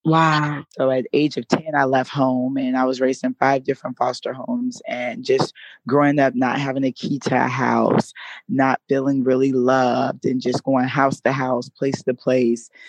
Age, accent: 20-39, American